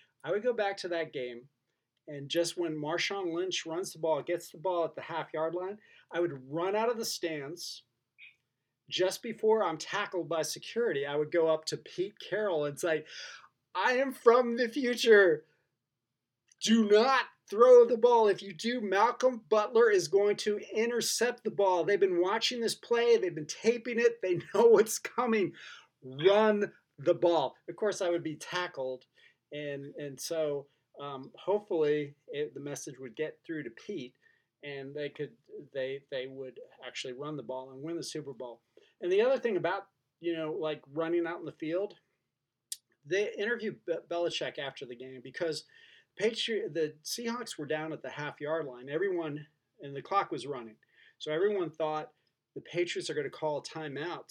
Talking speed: 180 wpm